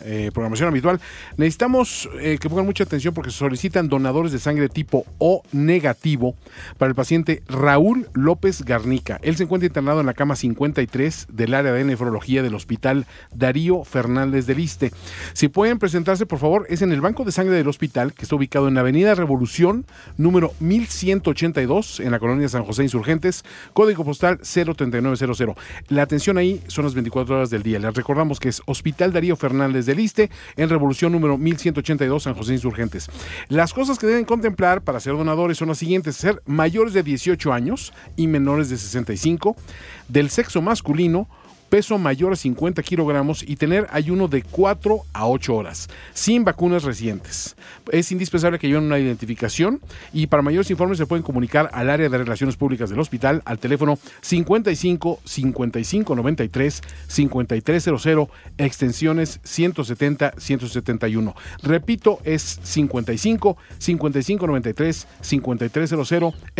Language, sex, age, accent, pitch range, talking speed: Spanish, male, 40-59, Mexican, 130-175 Hz, 150 wpm